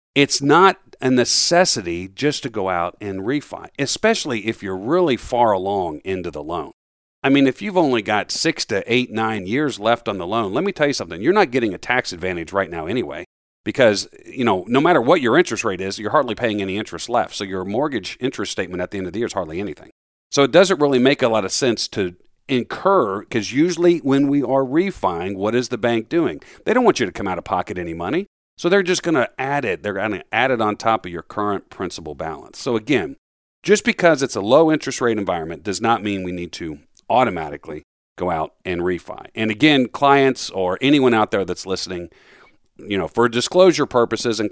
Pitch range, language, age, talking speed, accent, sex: 95-140 Hz, English, 50-69, 225 wpm, American, male